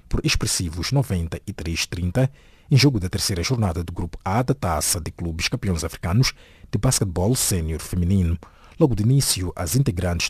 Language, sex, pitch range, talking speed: English, male, 85-120 Hz, 150 wpm